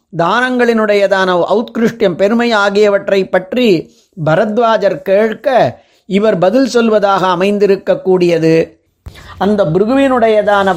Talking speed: 80 wpm